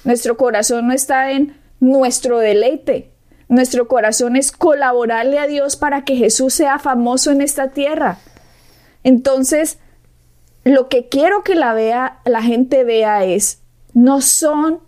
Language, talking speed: Spanish, 135 wpm